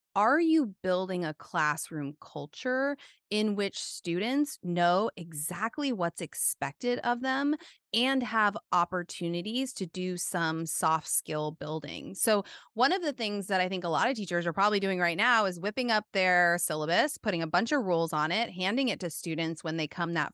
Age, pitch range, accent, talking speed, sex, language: 20-39, 170-250 Hz, American, 180 wpm, female, English